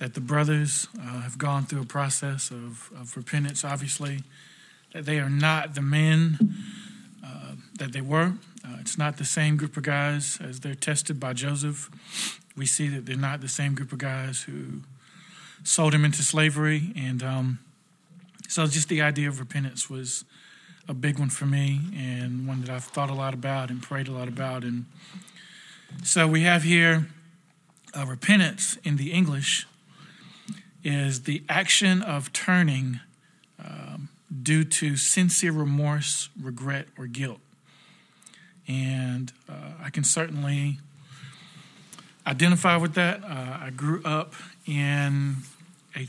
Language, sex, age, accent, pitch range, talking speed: English, male, 40-59, American, 135-170 Hz, 150 wpm